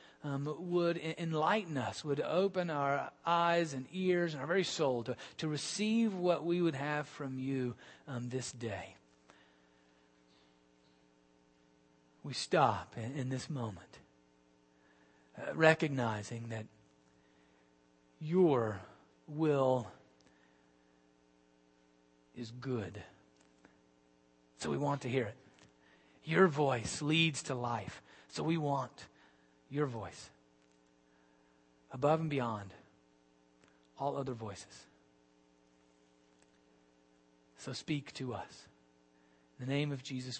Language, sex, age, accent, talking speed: English, male, 40-59, American, 105 wpm